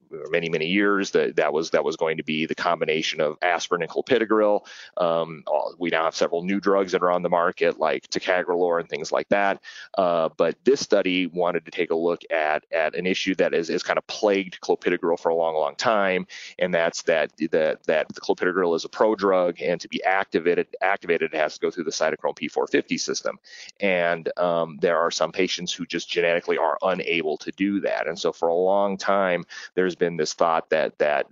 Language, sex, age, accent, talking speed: English, male, 30-49, American, 215 wpm